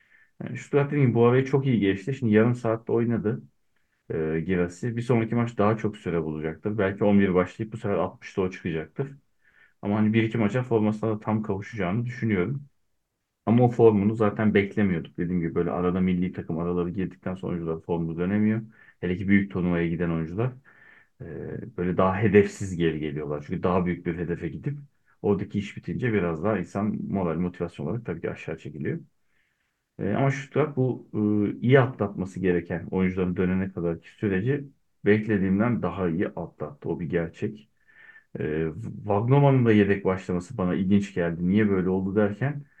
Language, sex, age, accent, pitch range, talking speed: Turkish, male, 40-59, native, 90-115 Hz, 165 wpm